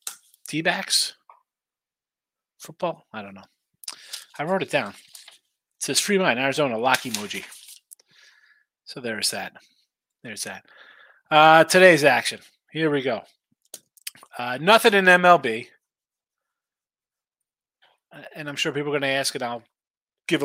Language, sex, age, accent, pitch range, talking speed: English, male, 30-49, American, 125-165 Hz, 125 wpm